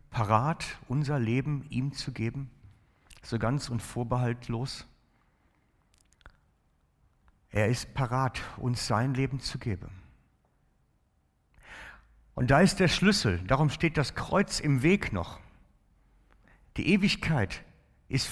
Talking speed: 110 wpm